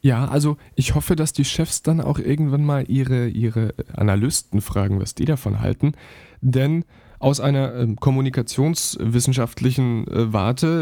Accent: German